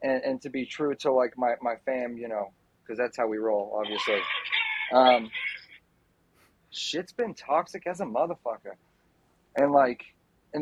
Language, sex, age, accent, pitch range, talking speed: English, male, 40-59, American, 115-140 Hz, 160 wpm